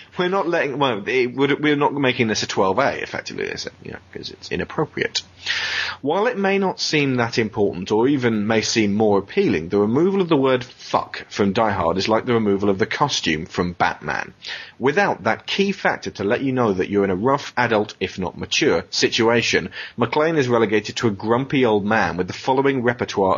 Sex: male